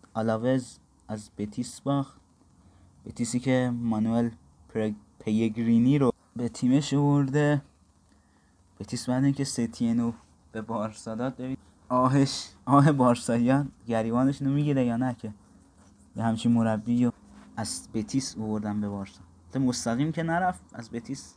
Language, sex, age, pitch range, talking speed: Persian, male, 20-39, 115-140 Hz, 120 wpm